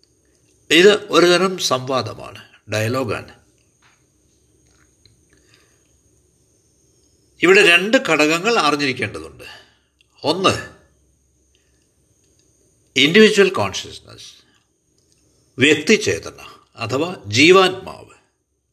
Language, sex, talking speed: Malayalam, male, 45 wpm